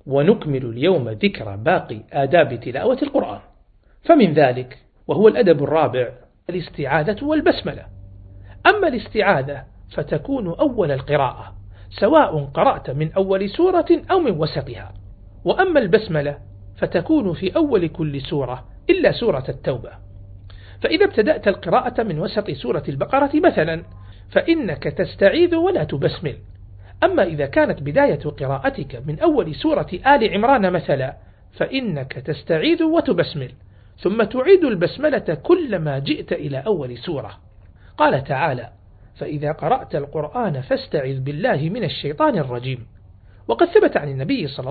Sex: male